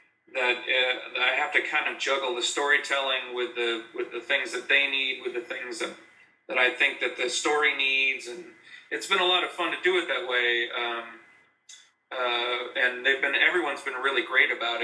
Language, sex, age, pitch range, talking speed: English, male, 40-59, 125-175 Hz, 205 wpm